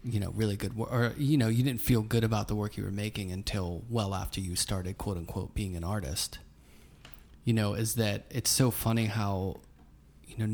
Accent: American